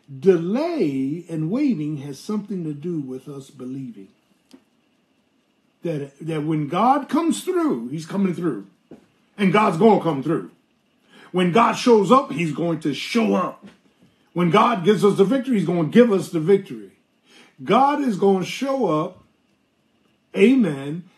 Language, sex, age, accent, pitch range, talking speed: English, male, 50-69, American, 155-225 Hz, 155 wpm